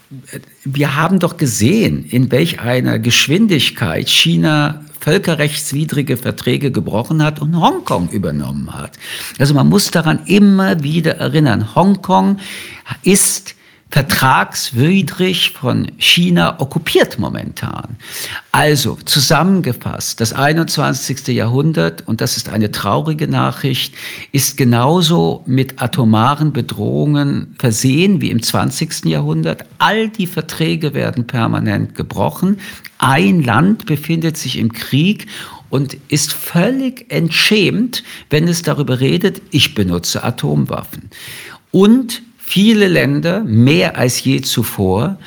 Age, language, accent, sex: 50-69, German, German, male